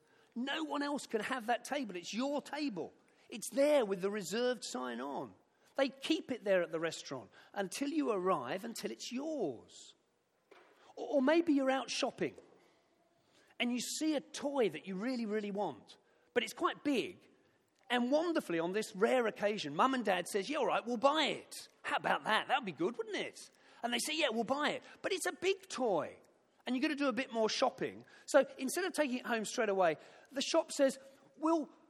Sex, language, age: male, English, 40-59